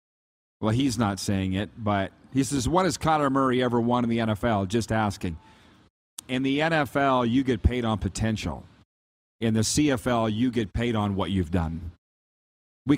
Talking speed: 175 wpm